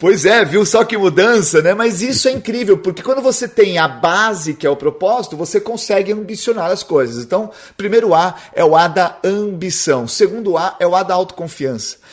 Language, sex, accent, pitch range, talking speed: Portuguese, male, Brazilian, 140-195 Hz, 205 wpm